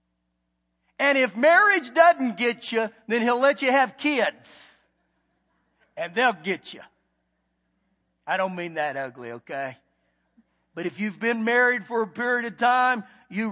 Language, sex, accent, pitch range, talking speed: English, male, American, 160-255 Hz, 145 wpm